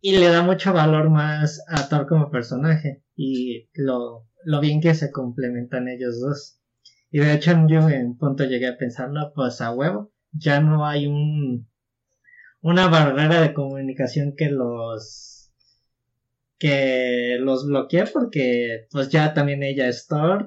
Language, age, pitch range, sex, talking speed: Spanish, 20-39, 125-155 Hz, male, 150 wpm